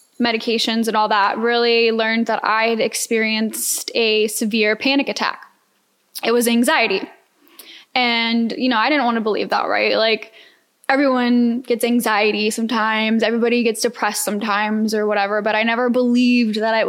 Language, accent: English, American